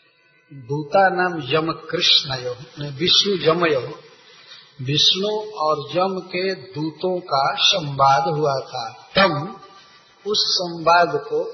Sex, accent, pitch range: male, native, 150-210 Hz